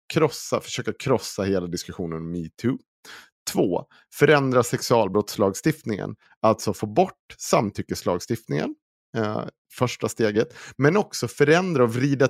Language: Swedish